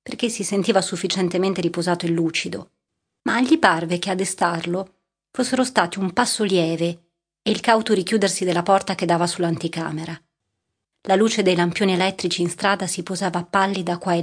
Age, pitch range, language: 30-49, 175-205 Hz, Italian